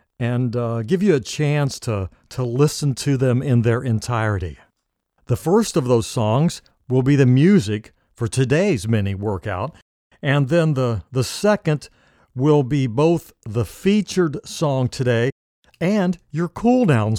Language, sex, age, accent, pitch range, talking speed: English, male, 60-79, American, 115-150 Hz, 145 wpm